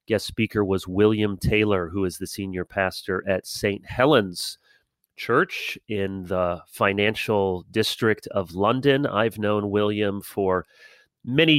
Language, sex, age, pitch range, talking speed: English, male, 30-49, 95-115 Hz, 130 wpm